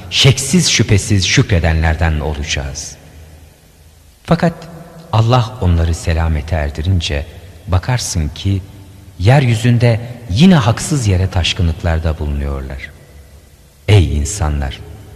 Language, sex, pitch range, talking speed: Turkish, male, 85-115 Hz, 75 wpm